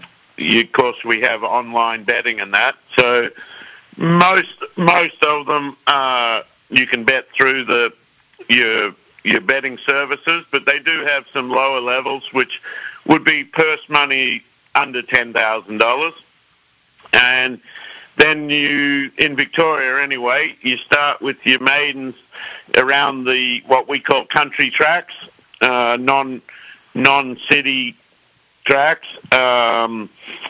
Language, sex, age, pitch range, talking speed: English, male, 50-69, 125-145 Hz, 125 wpm